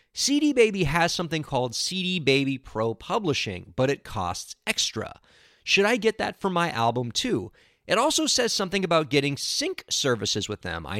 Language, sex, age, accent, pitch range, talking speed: English, male, 30-49, American, 125-205 Hz, 175 wpm